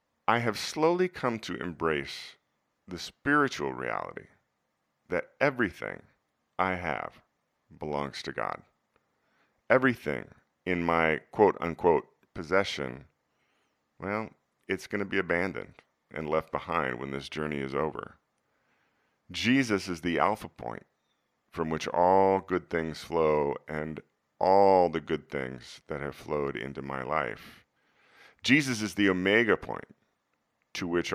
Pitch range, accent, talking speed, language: 75-95 Hz, American, 125 wpm, English